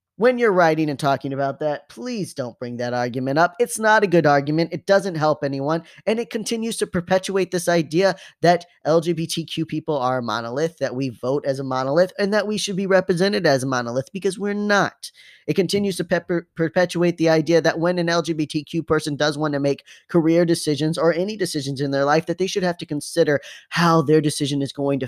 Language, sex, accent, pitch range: English, male, American, 140-185 Hz